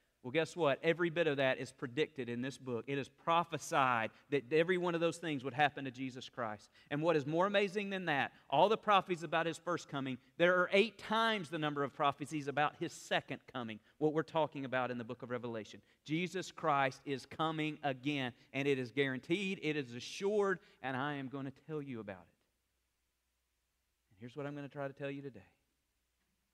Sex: male